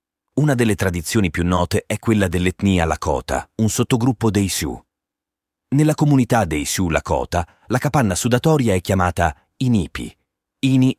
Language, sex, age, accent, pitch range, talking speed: Italian, male, 30-49, native, 85-115 Hz, 135 wpm